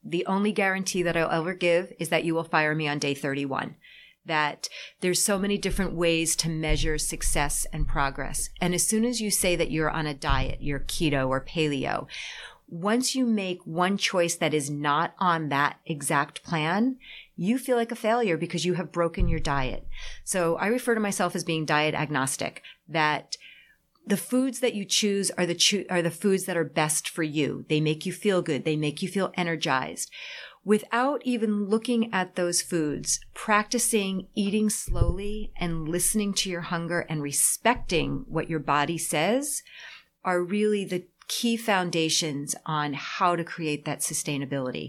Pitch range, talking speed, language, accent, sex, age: 155-210 Hz, 175 wpm, English, American, female, 30-49